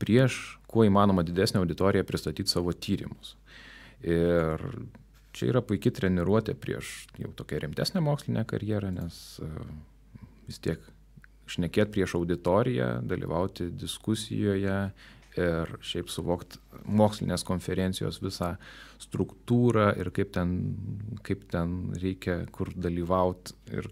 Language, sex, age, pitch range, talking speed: English, male, 30-49, 90-110 Hz, 110 wpm